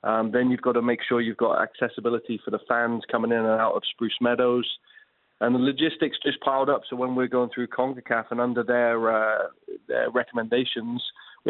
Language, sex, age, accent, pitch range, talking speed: English, male, 30-49, British, 115-125 Hz, 205 wpm